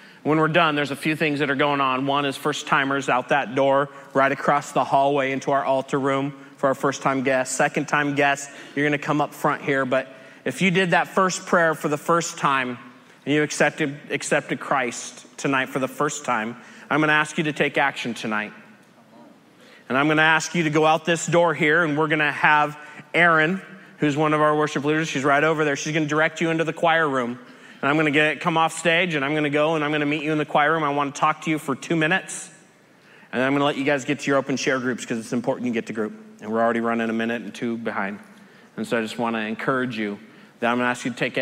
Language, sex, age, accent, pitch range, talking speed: English, male, 30-49, American, 130-160 Hz, 265 wpm